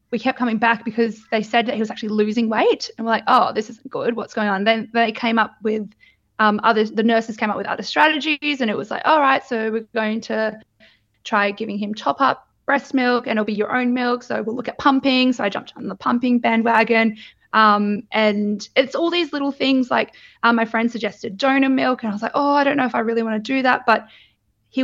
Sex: female